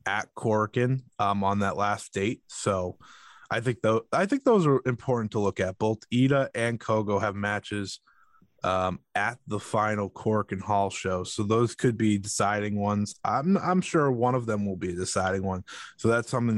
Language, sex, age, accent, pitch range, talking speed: English, male, 20-39, American, 105-130 Hz, 190 wpm